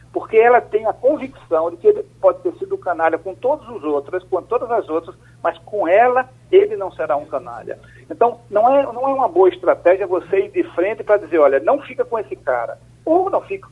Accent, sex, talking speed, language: Brazilian, male, 230 wpm, Portuguese